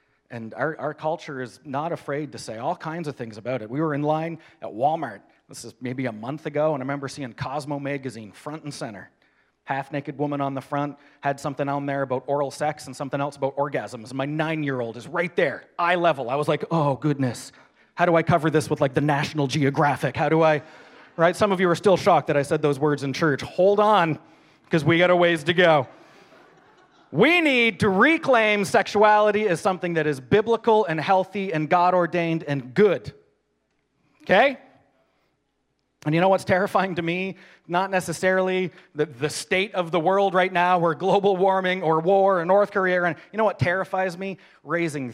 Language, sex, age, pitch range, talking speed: English, male, 30-49, 140-180 Hz, 200 wpm